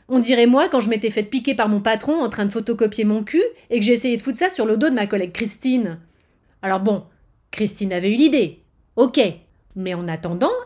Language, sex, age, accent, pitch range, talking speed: French, female, 30-49, French, 180-265 Hz, 230 wpm